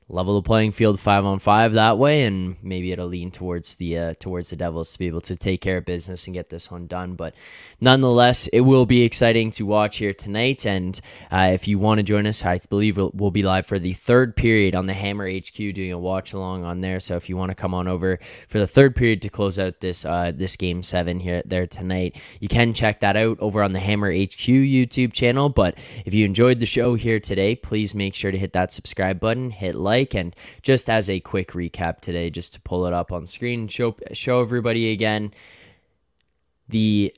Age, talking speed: 10-29, 230 wpm